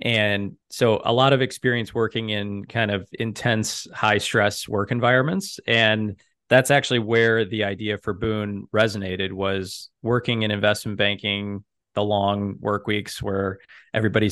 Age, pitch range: 20-39, 100-115 Hz